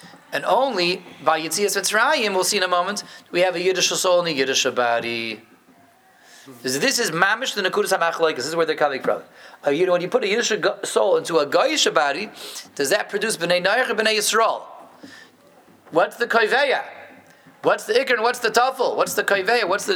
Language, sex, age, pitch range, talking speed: English, male, 30-49, 140-205 Hz, 200 wpm